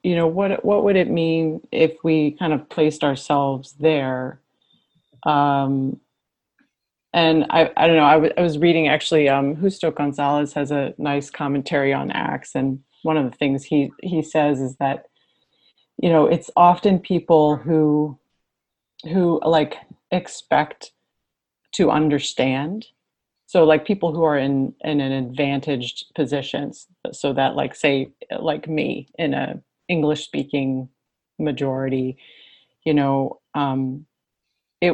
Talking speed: 140 wpm